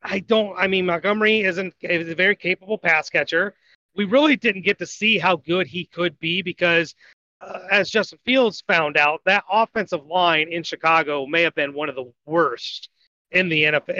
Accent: American